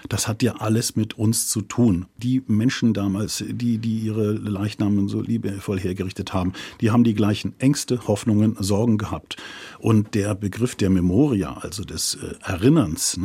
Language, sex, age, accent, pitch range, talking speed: German, male, 50-69, German, 105-125 Hz, 160 wpm